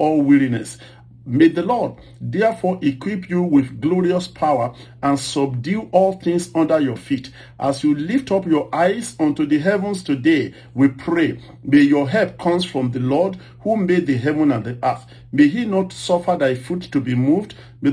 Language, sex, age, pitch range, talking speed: English, male, 50-69, 135-185 Hz, 180 wpm